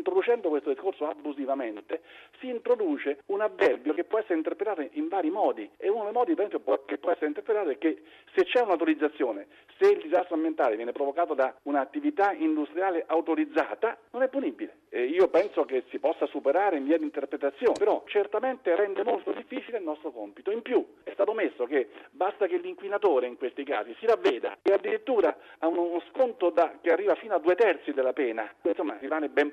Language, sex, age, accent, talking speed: Italian, male, 50-69, native, 180 wpm